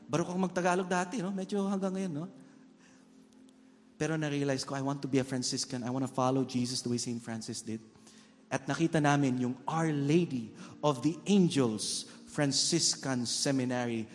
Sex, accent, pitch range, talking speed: male, Filipino, 115-180 Hz, 160 wpm